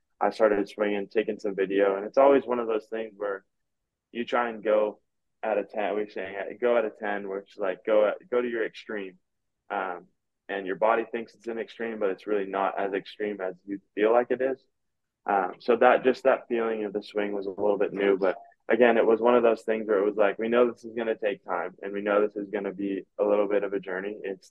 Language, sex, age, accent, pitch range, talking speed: English, male, 20-39, American, 100-110 Hz, 250 wpm